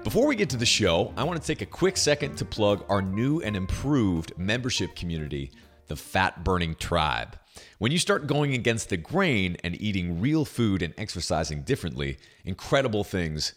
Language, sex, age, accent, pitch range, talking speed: English, male, 30-49, American, 90-125 Hz, 175 wpm